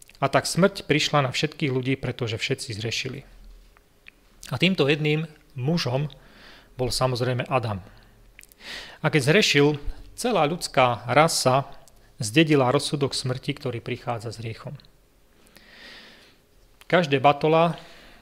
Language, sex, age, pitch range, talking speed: Slovak, male, 30-49, 120-145 Hz, 105 wpm